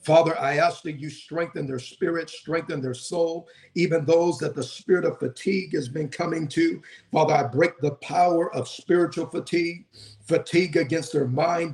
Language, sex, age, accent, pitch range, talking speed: English, male, 50-69, American, 150-180 Hz, 175 wpm